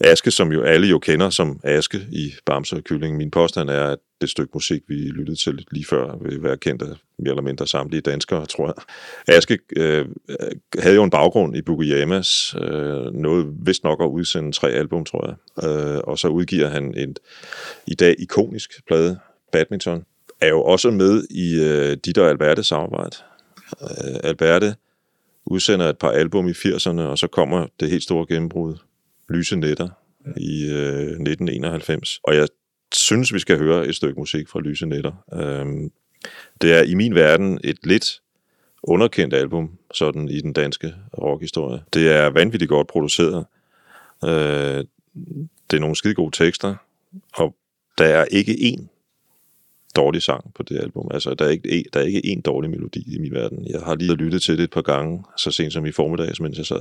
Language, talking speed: Danish, 175 wpm